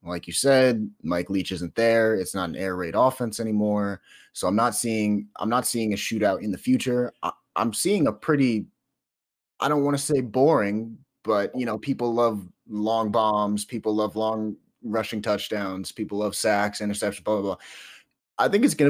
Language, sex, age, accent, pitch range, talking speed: English, male, 30-49, American, 100-120 Hz, 190 wpm